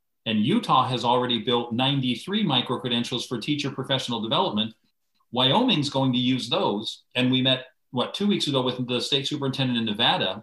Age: 40-59